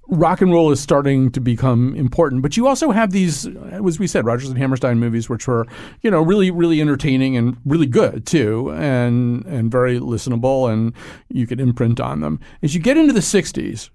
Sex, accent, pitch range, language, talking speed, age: male, American, 125-175 Hz, English, 200 wpm, 40-59